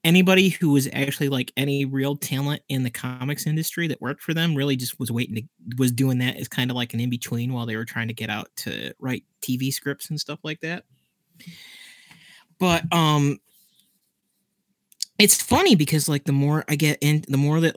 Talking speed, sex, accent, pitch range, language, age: 200 wpm, male, American, 125-155 Hz, English, 30-49